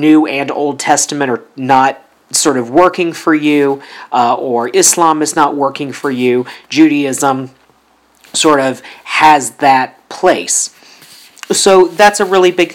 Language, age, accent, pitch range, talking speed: English, 40-59, American, 130-155 Hz, 140 wpm